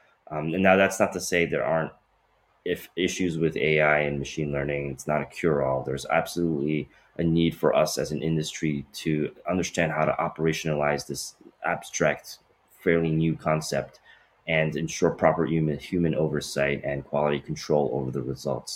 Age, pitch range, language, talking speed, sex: 30-49, 75-85 Hz, English, 165 wpm, male